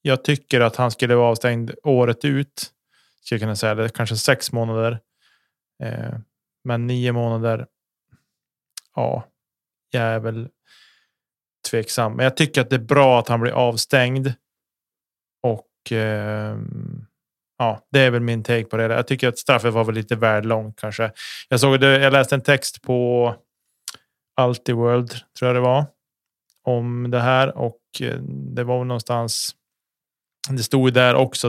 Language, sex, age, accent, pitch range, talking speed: Swedish, male, 20-39, Norwegian, 115-125 Hz, 155 wpm